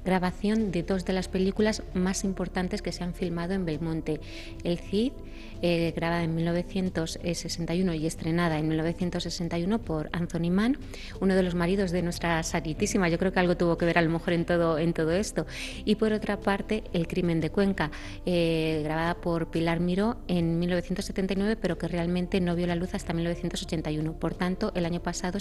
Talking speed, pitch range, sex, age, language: 185 wpm, 170-195 Hz, female, 20-39, Spanish